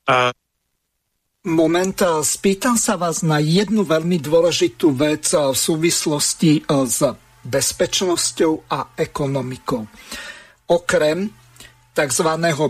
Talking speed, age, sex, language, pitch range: 80 wpm, 50-69, male, Slovak, 145-170 Hz